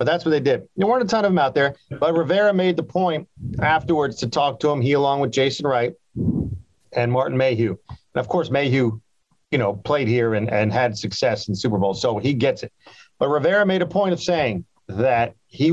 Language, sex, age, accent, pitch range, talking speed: English, male, 40-59, American, 125-160 Hz, 230 wpm